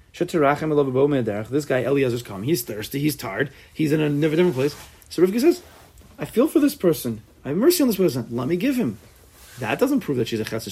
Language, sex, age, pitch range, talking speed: English, male, 30-49, 105-150 Hz, 225 wpm